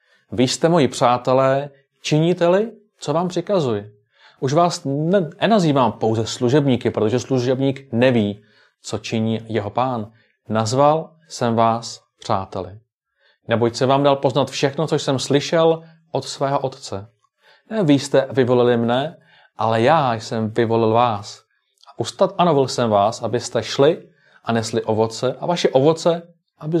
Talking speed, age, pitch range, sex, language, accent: 130 wpm, 30-49, 110-145 Hz, male, Czech, native